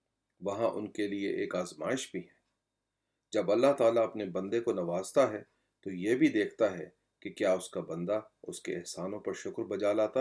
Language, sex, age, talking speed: Urdu, male, 40-59, 195 wpm